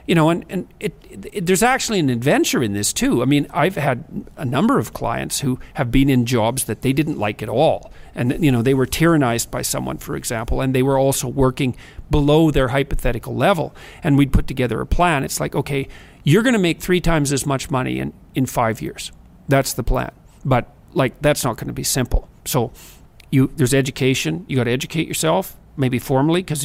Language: English